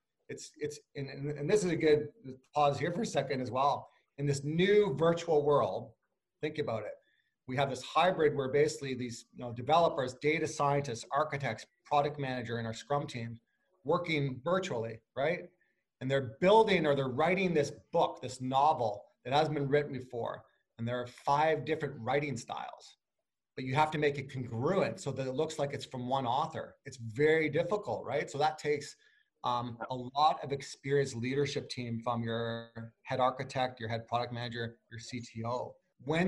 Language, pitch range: English, 125-155 Hz